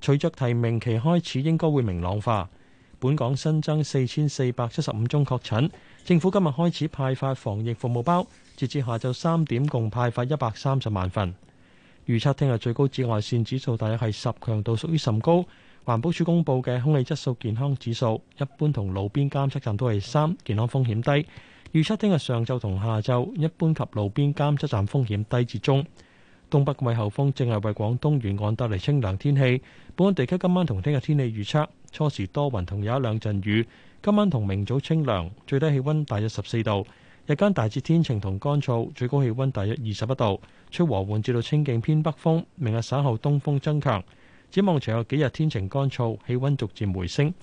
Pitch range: 110-150 Hz